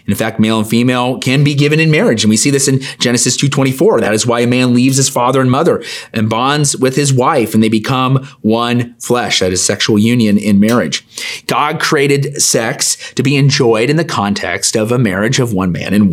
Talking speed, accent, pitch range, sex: 225 wpm, American, 110-145 Hz, male